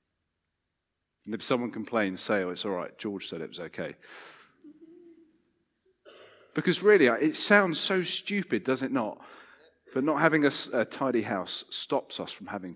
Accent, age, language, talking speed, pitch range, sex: British, 40-59, English, 160 wpm, 100-150 Hz, male